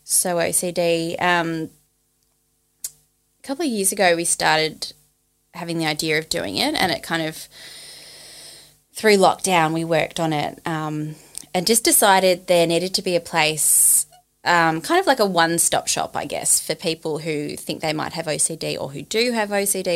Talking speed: 170 wpm